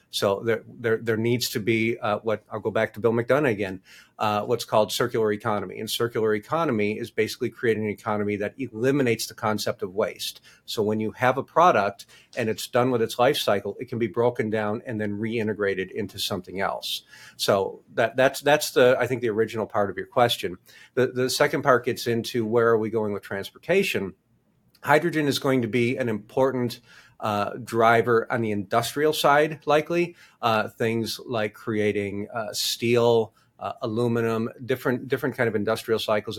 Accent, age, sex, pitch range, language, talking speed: American, 50-69, male, 110-125 Hz, English, 185 wpm